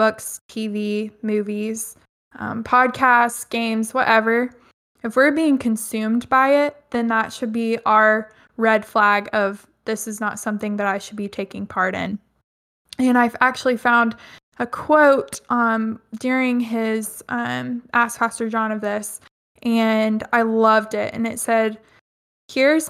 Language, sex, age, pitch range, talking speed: English, female, 20-39, 220-250 Hz, 145 wpm